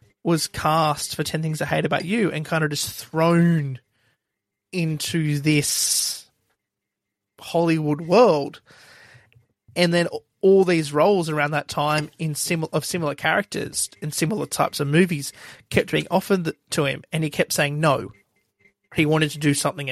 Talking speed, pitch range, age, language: 155 wpm, 145-170 Hz, 30-49, English